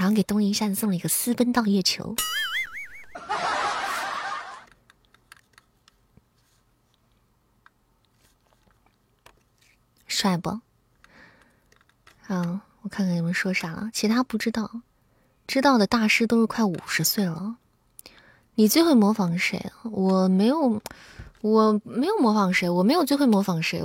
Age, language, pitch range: 20-39, Chinese, 190-245 Hz